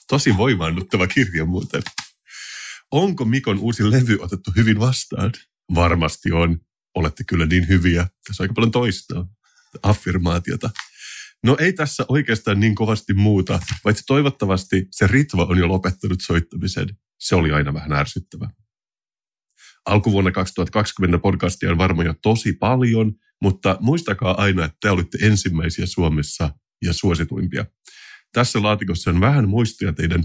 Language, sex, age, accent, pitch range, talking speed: Finnish, male, 30-49, native, 85-110 Hz, 135 wpm